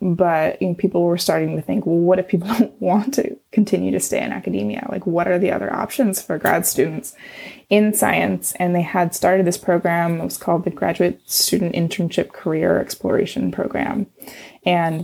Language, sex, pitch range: English, female, 165-195 Hz